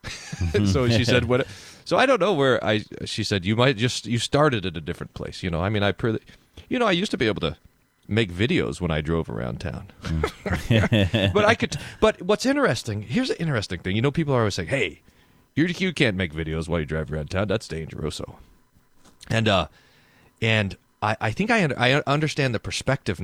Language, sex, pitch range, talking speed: English, male, 90-125 Hz, 215 wpm